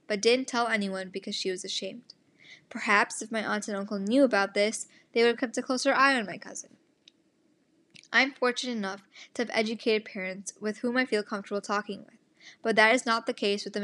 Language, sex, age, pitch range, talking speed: English, female, 10-29, 200-240 Hz, 215 wpm